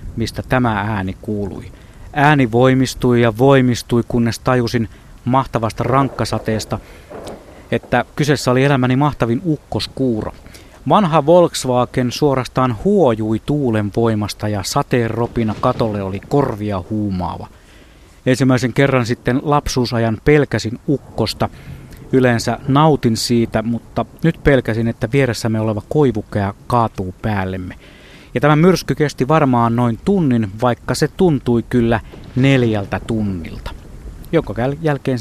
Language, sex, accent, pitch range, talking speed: Finnish, male, native, 105-135 Hz, 105 wpm